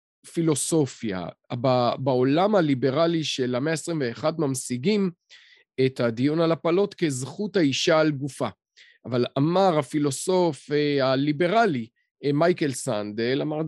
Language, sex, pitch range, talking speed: Hebrew, male, 135-170 Hz, 100 wpm